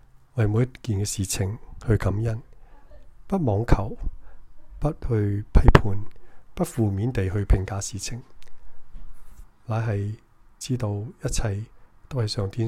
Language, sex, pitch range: Chinese, male, 100-120 Hz